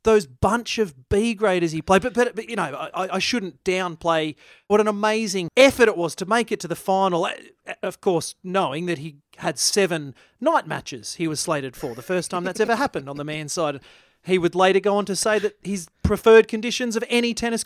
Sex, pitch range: male, 180-245 Hz